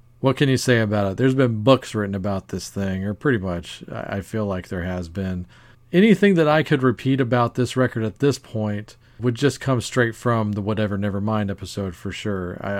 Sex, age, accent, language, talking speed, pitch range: male, 40-59, American, English, 210 wpm, 105-125 Hz